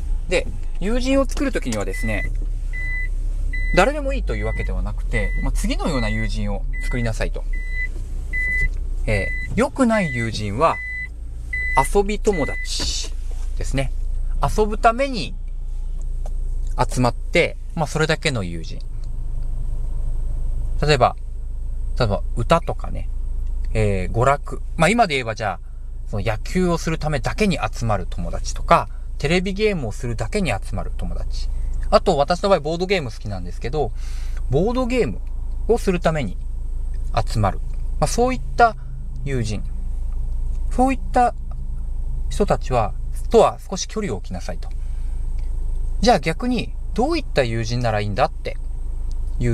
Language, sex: Japanese, male